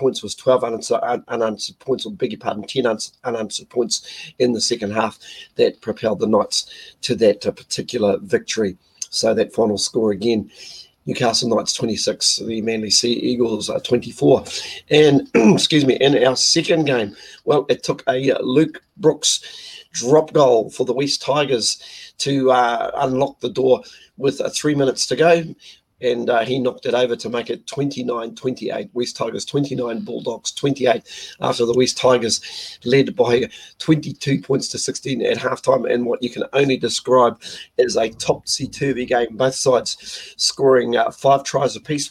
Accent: Australian